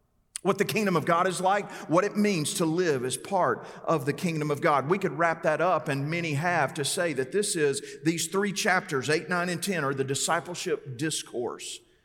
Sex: male